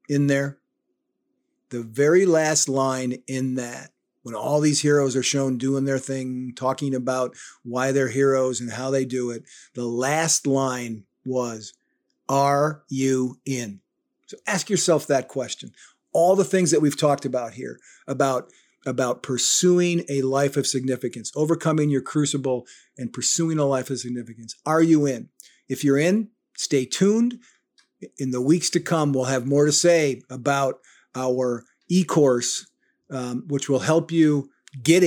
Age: 50-69